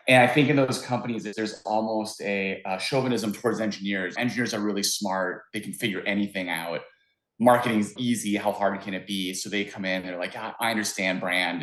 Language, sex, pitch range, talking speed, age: English, male, 95-115 Hz, 200 wpm, 30-49